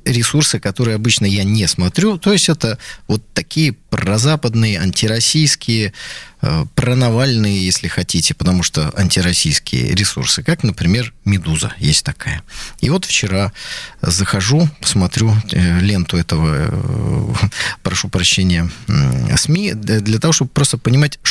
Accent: native